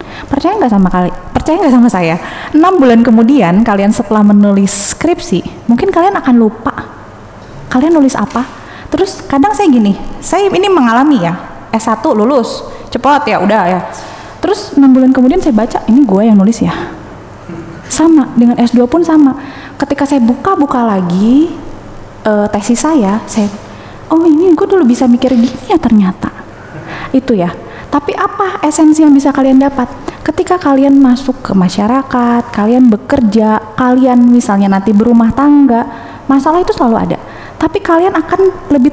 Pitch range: 225-315 Hz